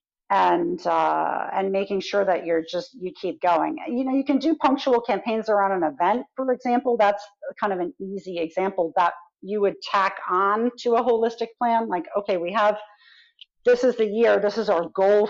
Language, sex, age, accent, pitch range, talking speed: English, female, 40-59, American, 180-230 Hz, 195 wpm